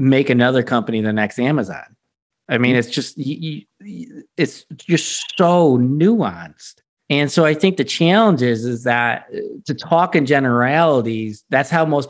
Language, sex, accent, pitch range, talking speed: English, male, American, 115-155 Hz, 160 wpm